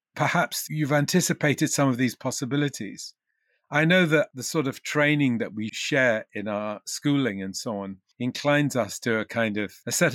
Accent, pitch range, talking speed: British, 125-160 Hz, 185 wpm